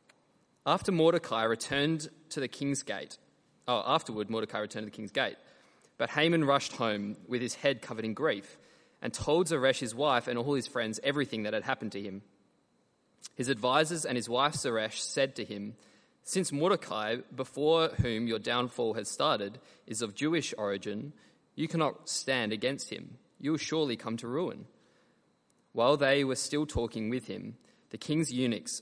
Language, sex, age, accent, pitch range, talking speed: English, male, 20-39, Australian, 115-150 Hz, 170 wpm